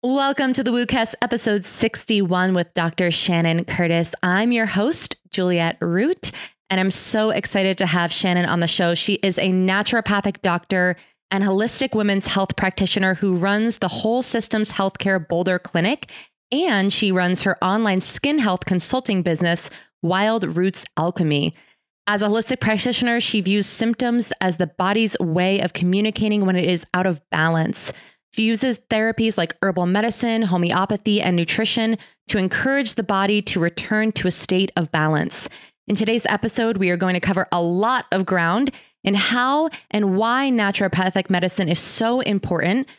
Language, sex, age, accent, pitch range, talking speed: English, female, 20-39, American, 180-220 Hz, 160 wpm